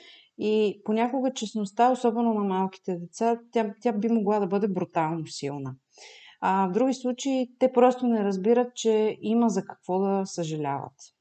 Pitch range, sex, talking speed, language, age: 190-240 Hz, female, 155 wpm, Bulgarian, 30-49